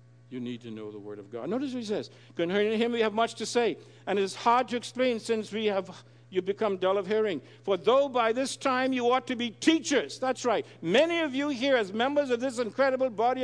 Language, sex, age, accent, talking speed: English, male, 60-79, American, 235 wpm